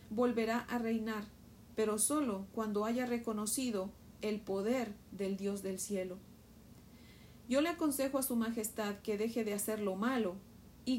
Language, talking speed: Spanish, 145 wpm